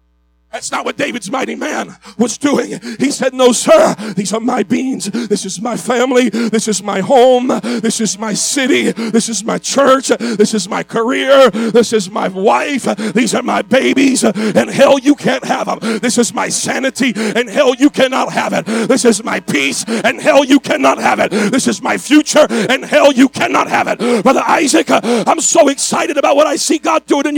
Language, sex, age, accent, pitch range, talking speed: English, male, 40-59, American, 220-300 Hz, 200 wpm